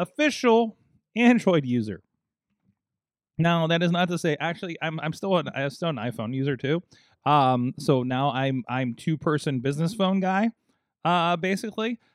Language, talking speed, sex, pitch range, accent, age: English, 160 wpm, male, 120-175 Hz, American, 20-39